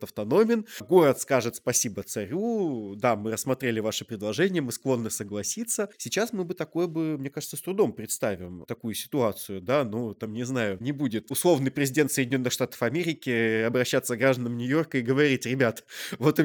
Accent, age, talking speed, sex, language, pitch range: native, 20-39, 170 wpm, male, Russian, 110-145 Hz